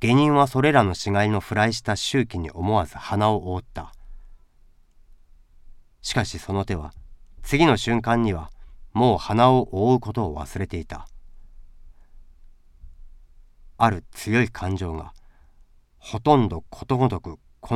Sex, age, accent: male, 40-59, native